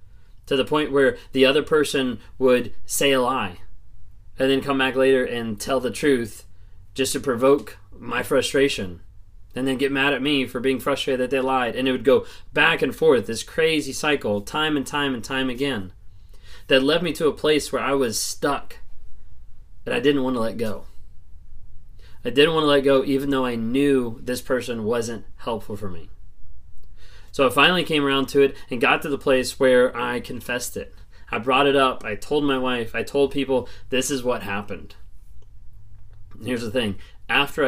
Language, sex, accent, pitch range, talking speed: English, male, American, 100-135 Hz, 195 wpm